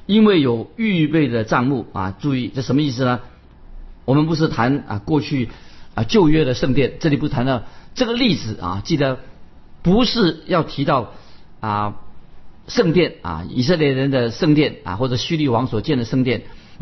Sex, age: male, 50-69